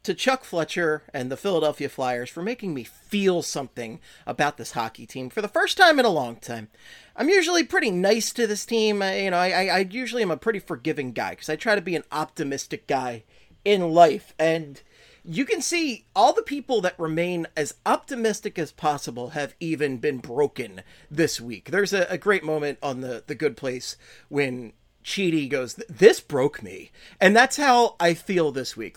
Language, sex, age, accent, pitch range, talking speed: English, male, 30-49, American, 145-210 Hz, 195 wpm